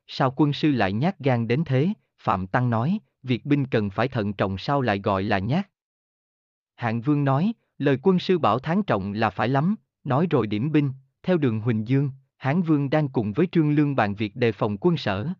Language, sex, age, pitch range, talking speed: Vietnamese, male, 20-39, 115-160 Hz, 215 wpm